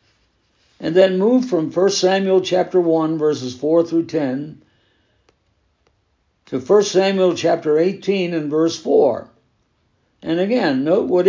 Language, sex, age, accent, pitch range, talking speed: English, male, 60-79, American, 140-190 Hz, 130 wpm